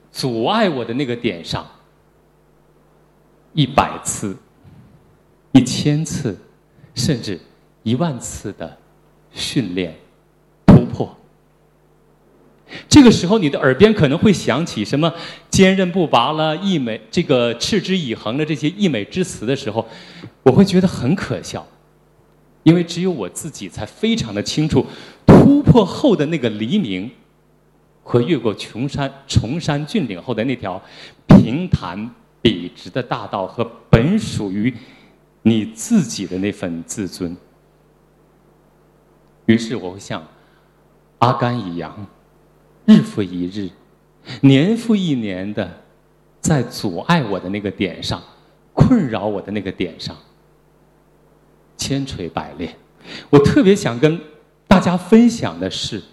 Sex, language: male, Chinese